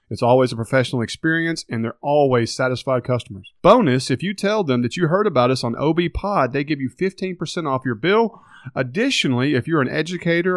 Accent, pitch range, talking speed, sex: American, 130-185 Hz, 200 wpm, male